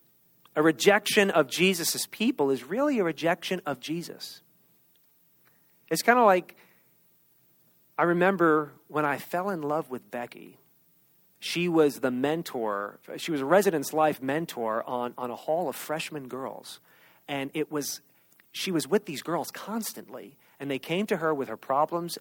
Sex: male